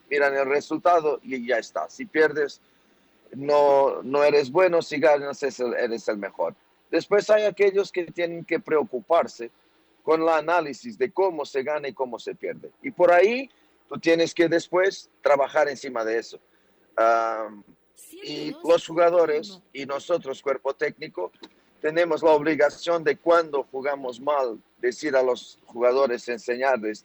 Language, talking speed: Spanish, 145 wpm